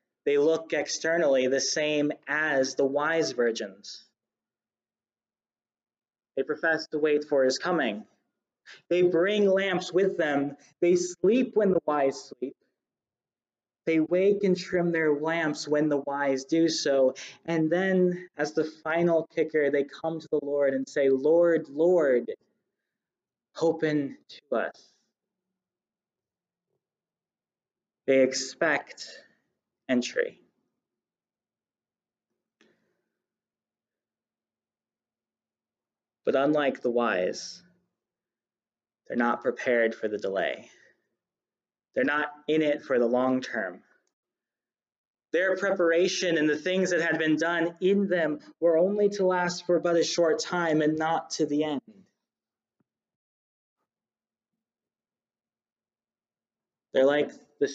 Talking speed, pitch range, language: 110 wpm, 145-180 Hz, English